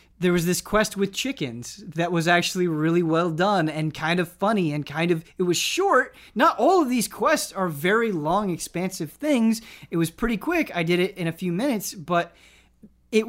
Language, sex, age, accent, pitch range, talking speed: English, male, 20-39, American, 150-195 Hz, 205 wpm